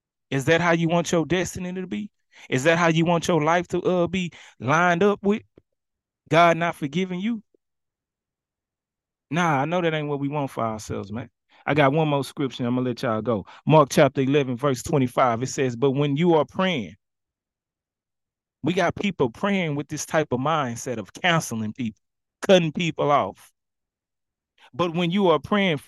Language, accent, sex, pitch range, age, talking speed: English, American, male, 135-180 Hz, 30-49, 185 wpm